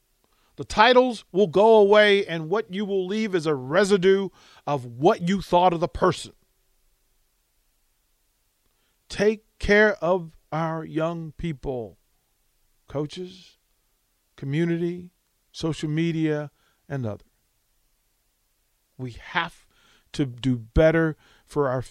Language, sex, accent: English, male, American